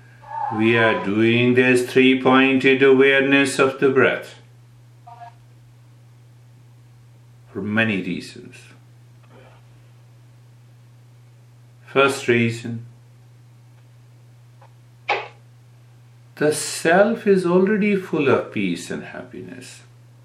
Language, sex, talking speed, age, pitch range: English, male, 70 wpm, 60-79, 120-125 Hz